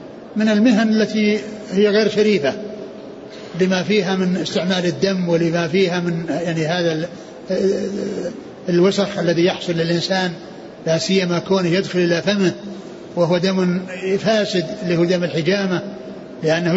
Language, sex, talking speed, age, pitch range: Arabic, male, 120 wpm, 60-79, 175-215 Hz